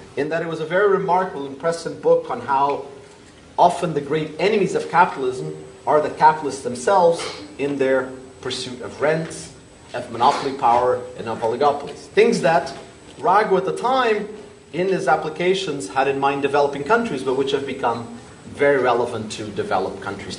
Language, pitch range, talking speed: English, 135-190 Hz, 160 wpm